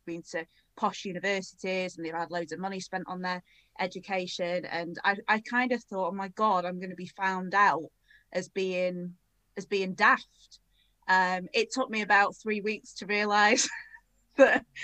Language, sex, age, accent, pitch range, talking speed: English, female, 20-39, British, 170-205 Hz, 175 wpm